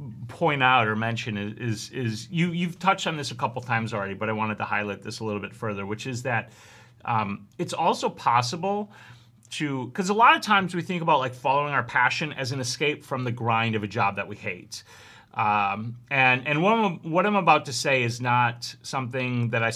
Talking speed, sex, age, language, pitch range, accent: 225 wpm, male, 30-49, English, 110-130 Hz, American